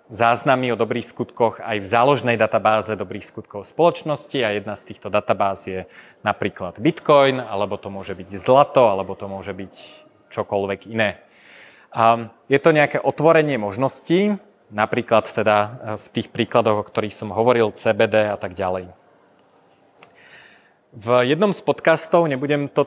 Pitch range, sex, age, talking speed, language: 110-135 Hz, male, 30-49, 145 wpm, Slovak